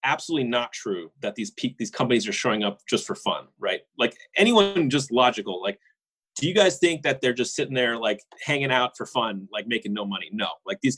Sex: male